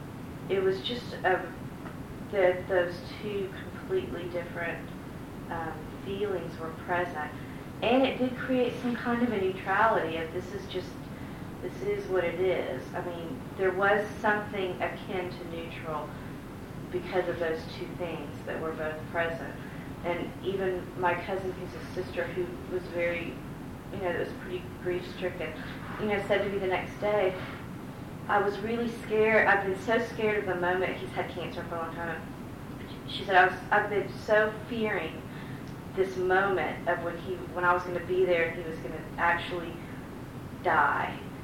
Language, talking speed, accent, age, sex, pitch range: English, 170 wpm, American, 40-59, female, 170-200 Hz